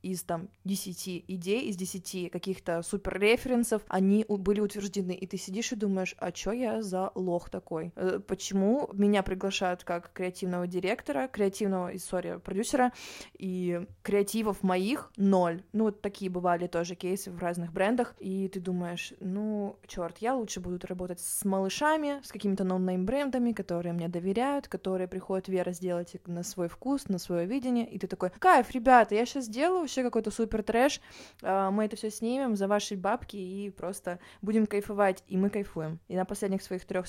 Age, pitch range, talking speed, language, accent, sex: 20-39, 185-215 Hz, 170 wpm, Russian, native, female